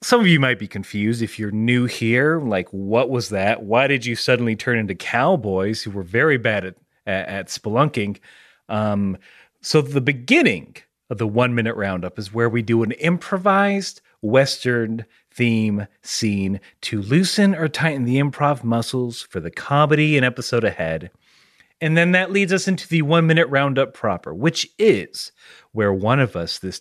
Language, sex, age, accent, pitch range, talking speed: English, male, 30-49, American, 110-160 Hz, 170 wpm